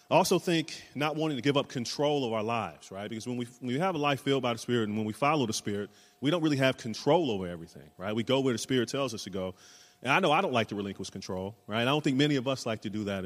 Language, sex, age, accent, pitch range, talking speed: English, male, 30-49, American, 105-135 Hz, 310 wpm